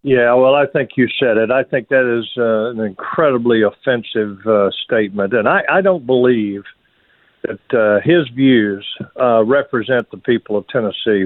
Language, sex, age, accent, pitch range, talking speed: English, male, 50-69, American, 110-150 Hz, 170 wpm